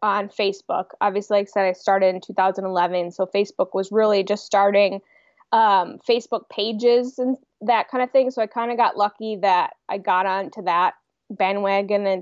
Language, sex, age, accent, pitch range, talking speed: English, female, 20-39, American, 195-240 Hz, 175 wpm